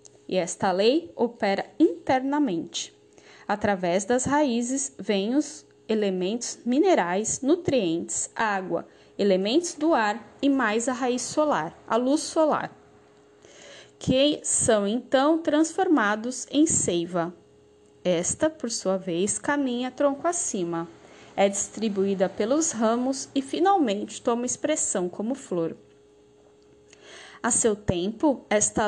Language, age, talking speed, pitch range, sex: Portuguese, 10-29, 110 wpm, 190-280 Hz, female